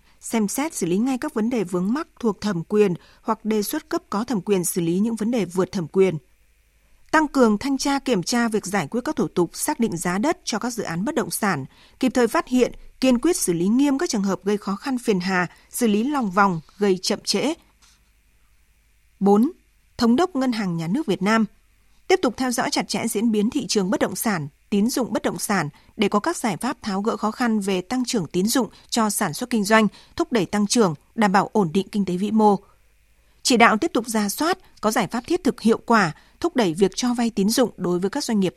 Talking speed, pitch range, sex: 245 wpm, 190-245 Hz, female